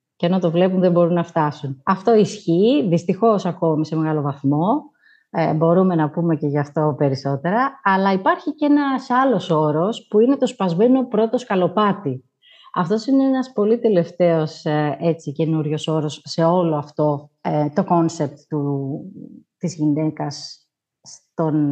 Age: 30-49